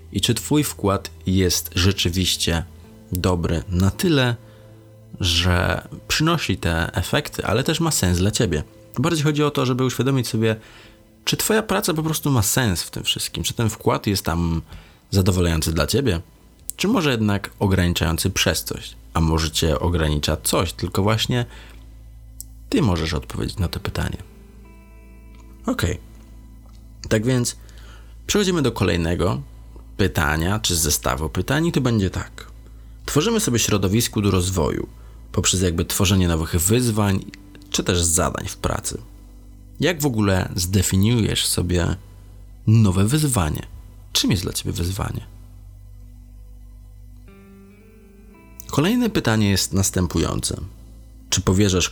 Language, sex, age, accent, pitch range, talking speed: Polish, male, 20-39, native, 85-110 Hz, 125 wpm